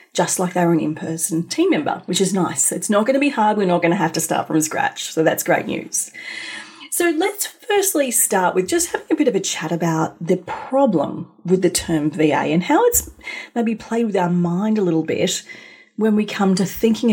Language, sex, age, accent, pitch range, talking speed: English, female, 30-49, Australian, 165-235 Hz, 225 wpm